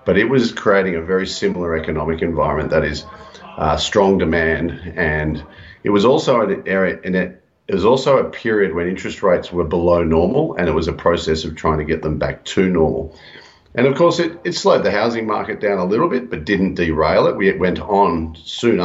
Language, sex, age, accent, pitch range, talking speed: English, male, 40-59, Australian, 80-95 Hz, 215 wpm